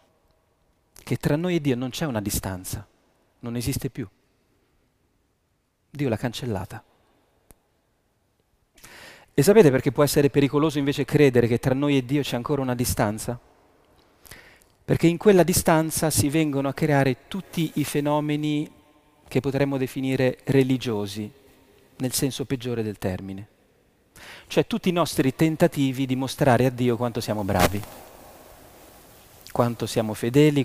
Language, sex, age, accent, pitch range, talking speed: Italian, male, 40-59, native, 115-155 Hz, 130 wpm